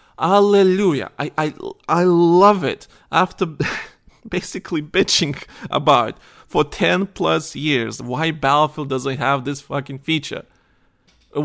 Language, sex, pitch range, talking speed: English, male, 120-160 Hz, 120 wpm